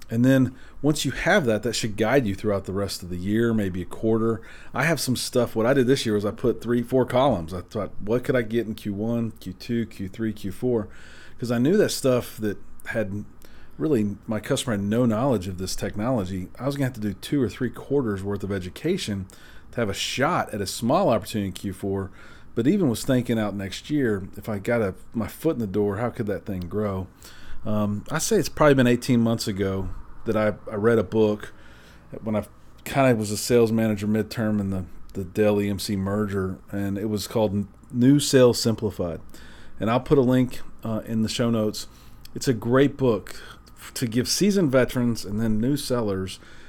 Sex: male